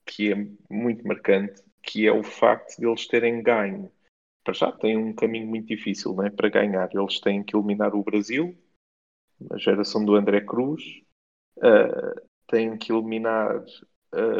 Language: Portuguese